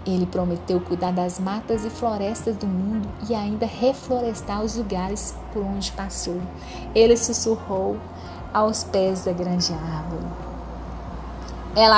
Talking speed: 125 wpm